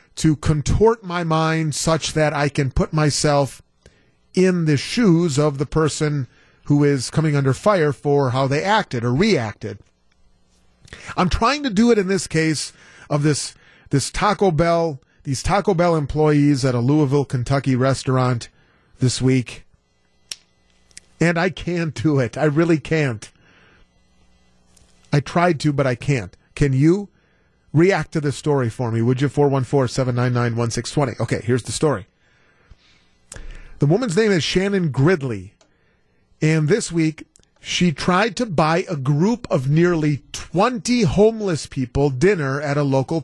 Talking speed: 145 wpm